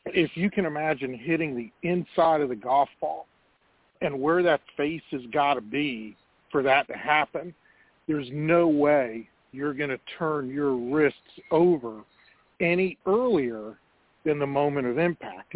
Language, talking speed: English, 155 wpm